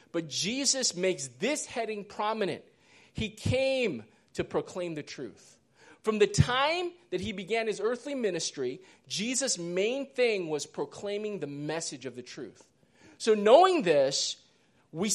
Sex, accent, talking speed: male, American, 140 wpm